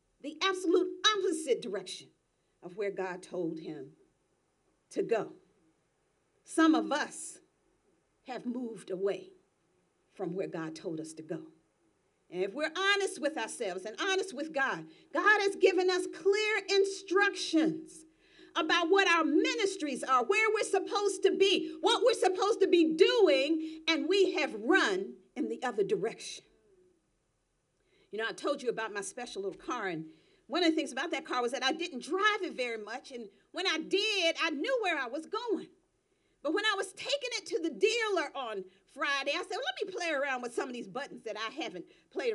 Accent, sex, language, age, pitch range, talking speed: American, female, English, 50-69, 275-395 Hz, 180 wpm